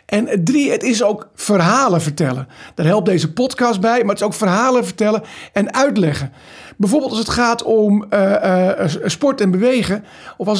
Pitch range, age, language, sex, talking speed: 190-240 Hz, 50-69, Dutch, male, 180 wpm